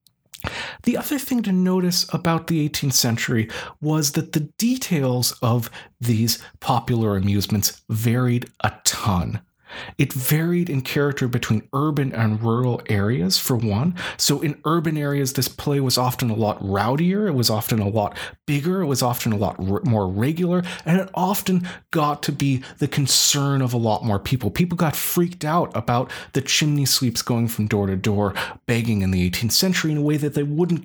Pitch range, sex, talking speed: 120-175 Hz, male, 180 wpm